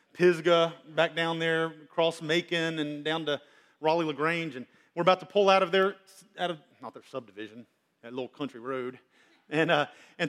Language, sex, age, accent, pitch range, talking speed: English, male, 40-59, American, 140-175 Hz, 175 wpm